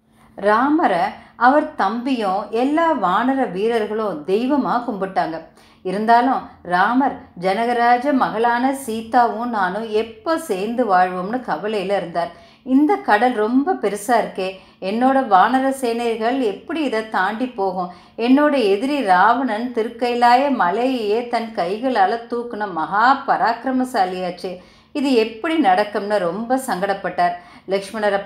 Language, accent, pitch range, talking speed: Tamil, native, 200-260 Hz, 95 wpm